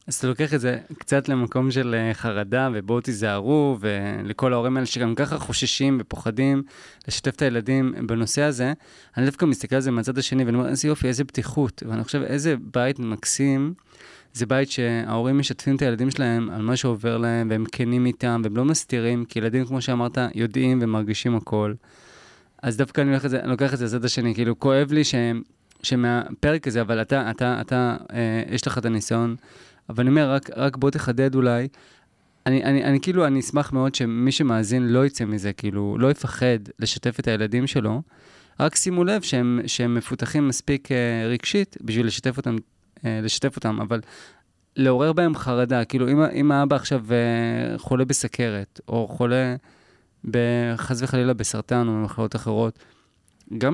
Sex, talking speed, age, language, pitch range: male, 150 wpm, 20-39, Hebrew, 115-135 Hz